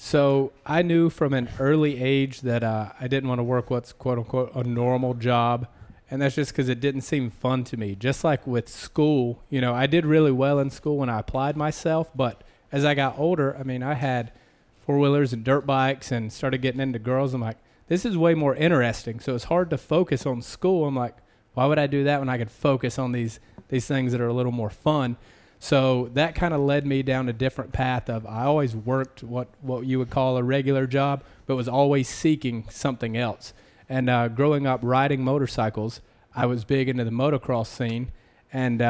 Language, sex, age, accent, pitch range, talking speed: English, male, 30-49, American, 120-140 Hz, 220 wpm